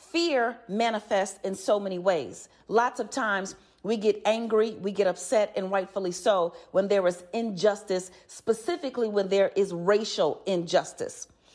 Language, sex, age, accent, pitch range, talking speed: English, female, 40-59, American, 185-225 Hz, 145 wpm